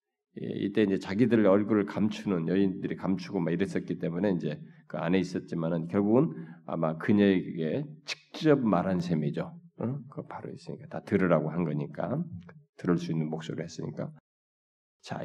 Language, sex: Korean, male